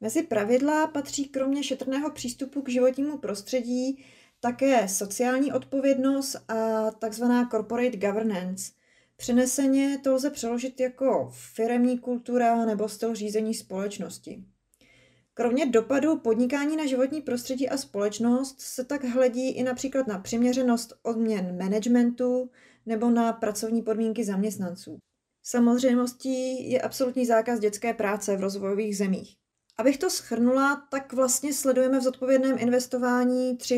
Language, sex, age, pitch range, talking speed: Czech, female, 20-39, 210-255 Hz, 120 wpm